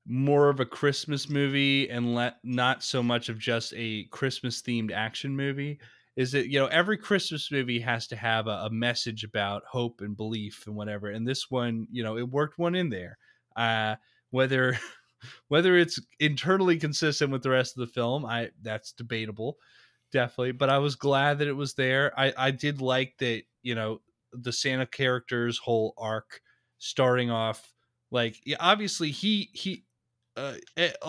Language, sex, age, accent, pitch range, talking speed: English, male, 20-39, American, 115-140 Hz, 170 wpm